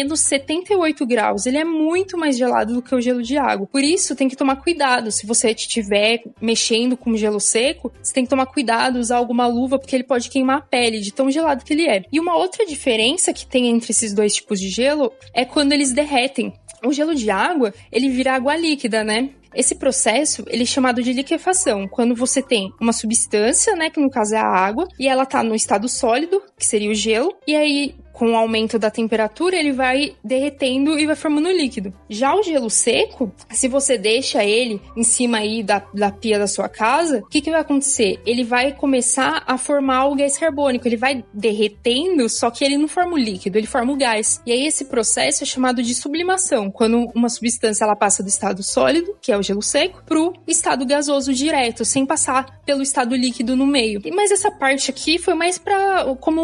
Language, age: Portuguese, 20-39